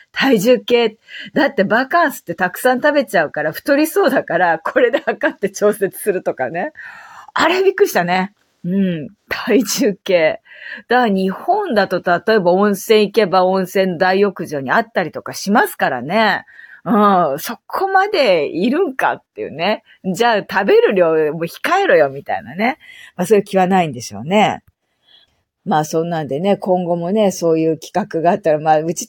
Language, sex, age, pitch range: Japanese, female, 40-59, 165-230 Hz